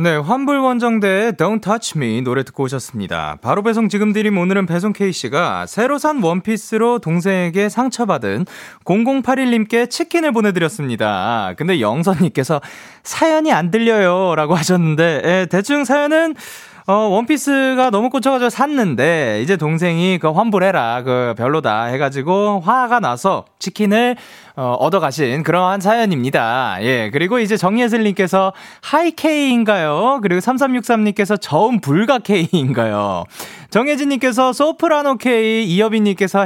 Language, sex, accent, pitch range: Korean, male, native, 170-245 Hz